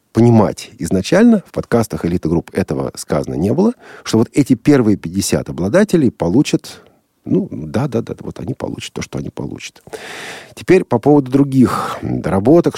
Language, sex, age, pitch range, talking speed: Russian, male, 50-69, 85-110 Hz, 145 wpm